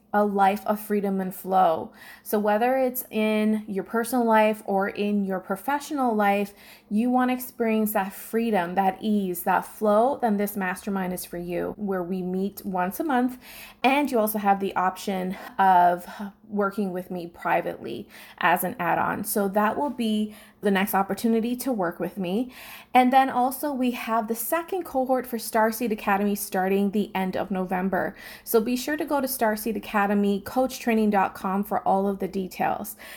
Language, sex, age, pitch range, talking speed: English, female, 20-39, 195-240 Hz, 170 wpm